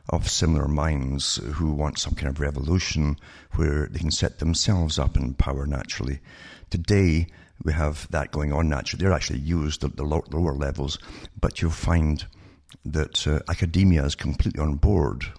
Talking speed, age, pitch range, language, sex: 165 wpm, 60-79, 75-85 Hz, English, male